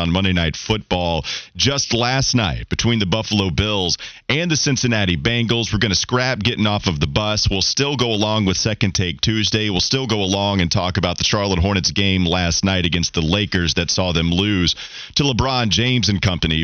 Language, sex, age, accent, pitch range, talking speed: English, male, 40-59, American, 90-115 Hz, 205 wpm